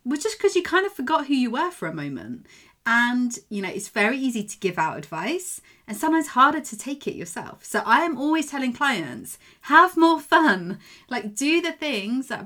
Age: 30-49